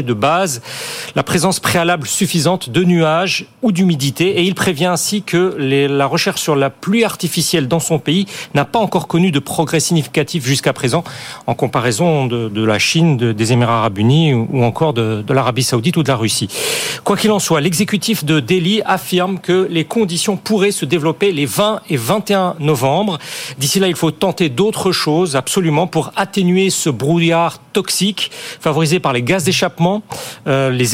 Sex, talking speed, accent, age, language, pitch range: male, 180 wpm, French, 40-59, French, 140-180 Hz